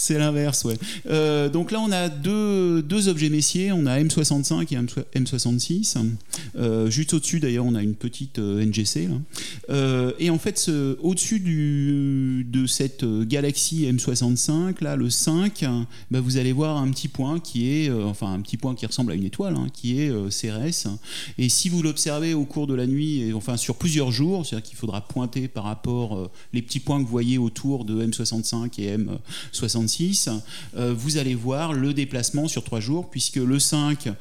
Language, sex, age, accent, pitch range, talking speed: French, male, 30-49, French, 120-150 Hz, 190 wpm